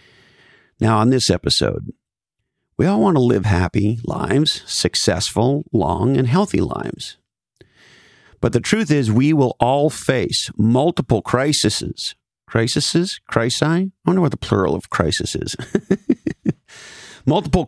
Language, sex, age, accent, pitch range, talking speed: English, male, 50-69, American, 105-145 Hz, 125 wpm